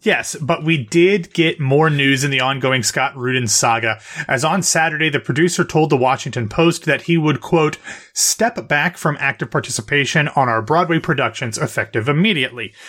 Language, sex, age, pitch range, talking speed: English, male, 30-49, 125-165 Hz, 170 wpm